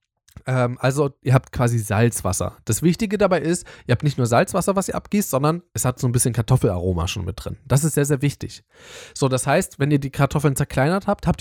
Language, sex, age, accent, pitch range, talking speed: German, male, 10-29, German, 115-155 Hz, 220 wpm